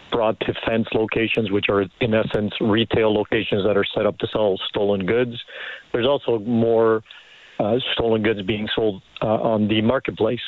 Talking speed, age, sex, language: 170 wpm, 50-69, male, English